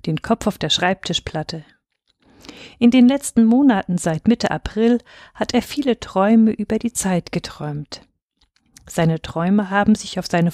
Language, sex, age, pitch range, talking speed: German, female, 50-69, 165-230 Hz, 150 wpm